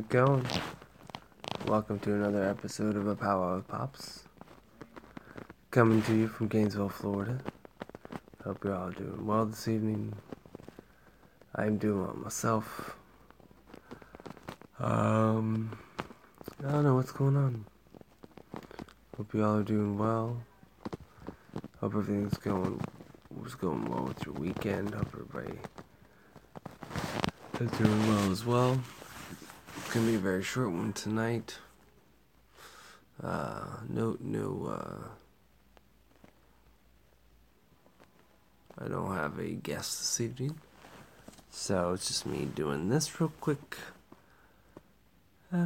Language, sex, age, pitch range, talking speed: English, male, 20-39, 105-130 Hz, 110 wpm